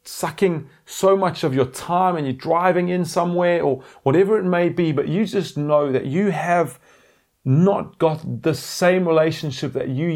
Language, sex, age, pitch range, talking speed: English, male, 30-49, 135-185 Hz, 175 wpm